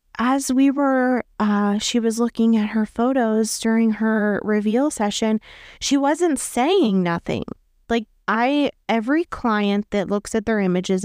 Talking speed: 145 wpm